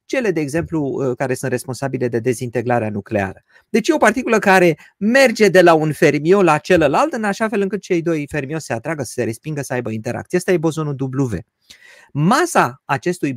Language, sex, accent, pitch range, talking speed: Romanian, male, native, 145-205 Hz, 190 wpm